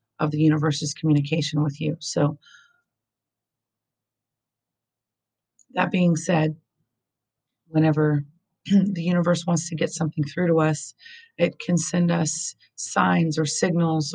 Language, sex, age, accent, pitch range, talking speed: English, female, 40-59, American, 140-165 Hz, 115 wpm